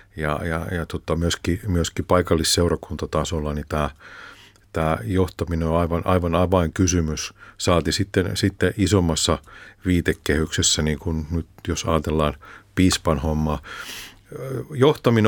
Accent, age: native, 50-69